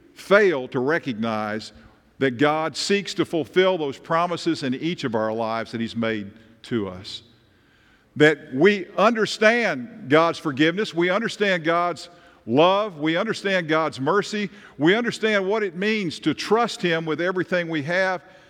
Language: English